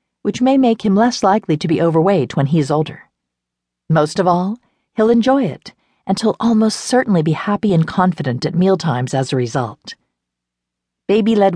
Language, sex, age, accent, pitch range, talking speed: English, female, 50-69, American, 150-200 Hz, 170 wpm